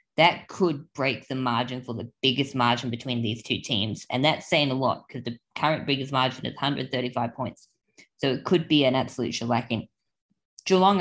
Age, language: 20-39, English